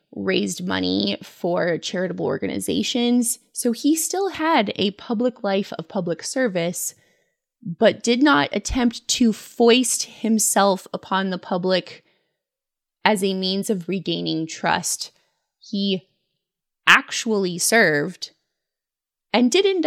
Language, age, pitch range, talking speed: English, 20-39, 180-240 Hz, 110 wpm